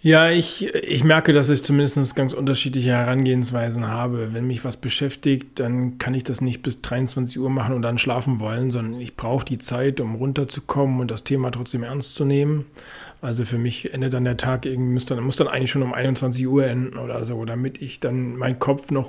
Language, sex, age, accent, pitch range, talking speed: German, male, 40-59, German, 125-145 Hz, 215 wpm